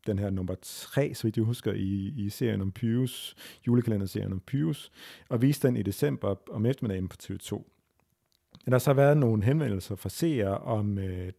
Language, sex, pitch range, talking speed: Danish, male, 100-125 Hz, 180 wpm